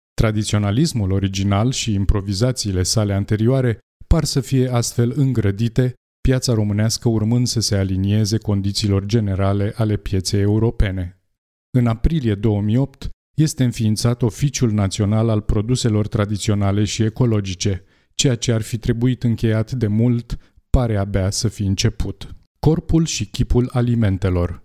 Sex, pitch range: male, 100-125 Hz